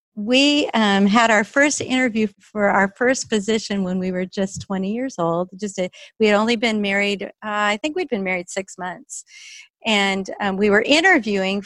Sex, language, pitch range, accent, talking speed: female, English, 190-240 Hz, American, 190 wpm